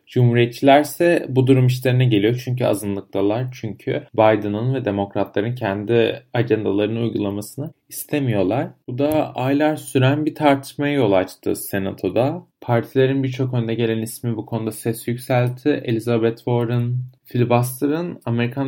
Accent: native